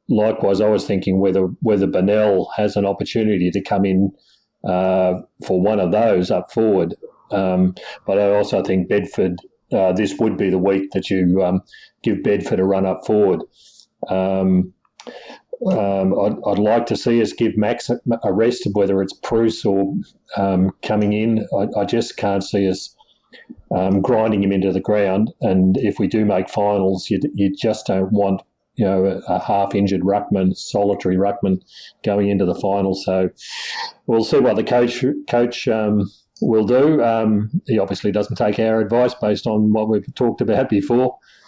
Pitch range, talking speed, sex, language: 95-110 Hz, 170 wpm, male, English